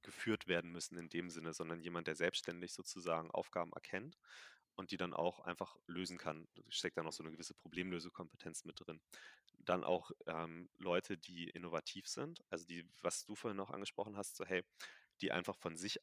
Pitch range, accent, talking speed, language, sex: 85-95 Hz, German, 190 wpm, German, male